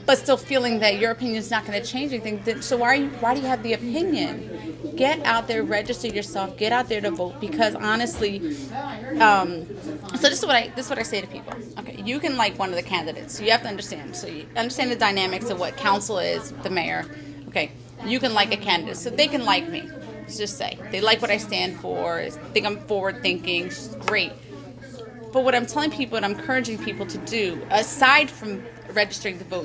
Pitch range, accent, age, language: 210-270 Hz, American, 30-49, English